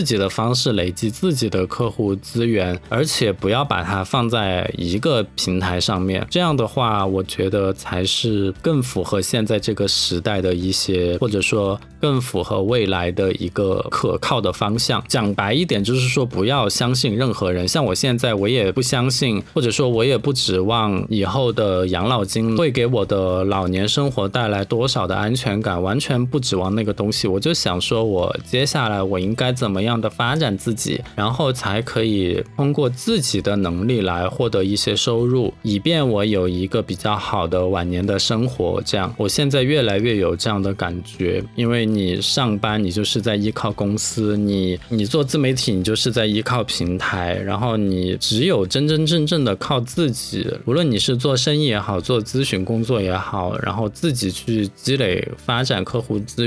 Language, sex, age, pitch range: Chinese, male, 20-39, 95-125 Hz